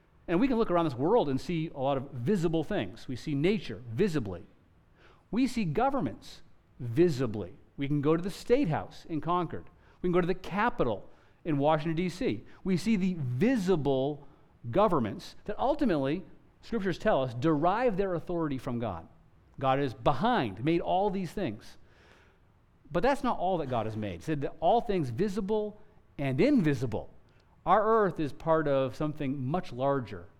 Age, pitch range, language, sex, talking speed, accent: 40-59, 130-185 Hz, English, male, 170 wpm, American